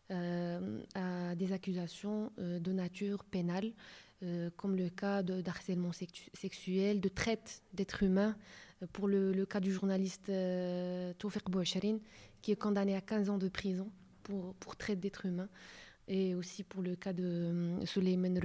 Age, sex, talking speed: 20-39, female, 170 wpm